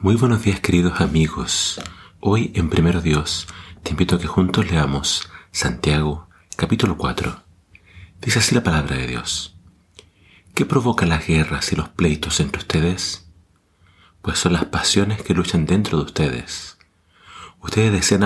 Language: Spanish